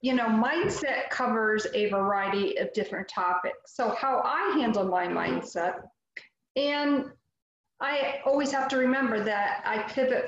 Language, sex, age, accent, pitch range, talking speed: English, female, 40-59, American, 195-235 Hz, 140 wpm